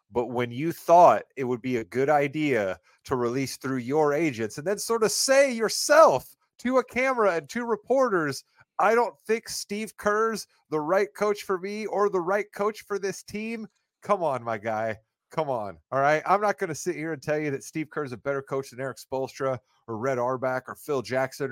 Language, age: English, 30-49